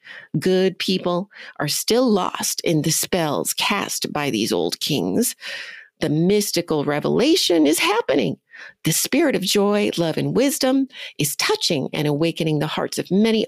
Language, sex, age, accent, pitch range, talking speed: English, female, 40-59, American, 160-240 Hz, 145 wpm